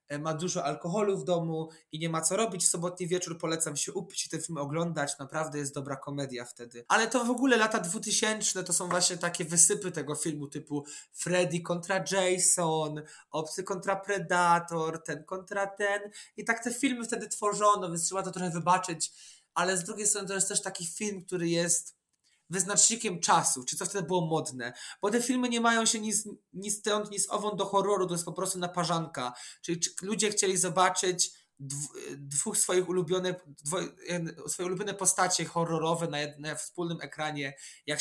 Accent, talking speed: native, 175 wpm